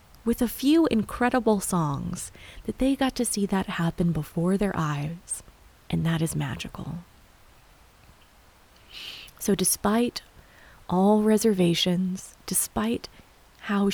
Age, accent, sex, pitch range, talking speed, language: 20-39, American, female, 160-220 Hz, 110 wpm, English